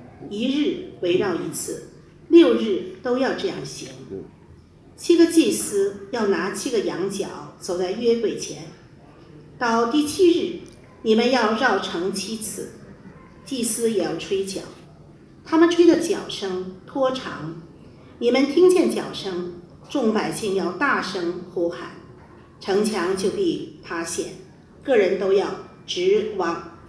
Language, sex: English, female